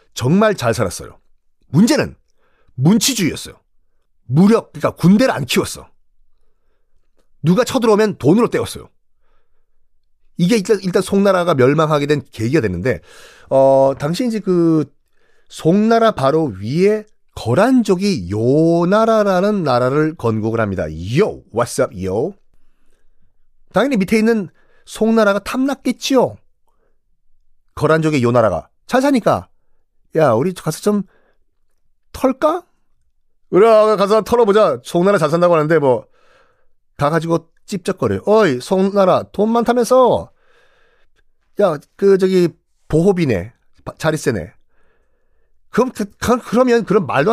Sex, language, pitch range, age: male, Korean, 150-225 Hz, 40-59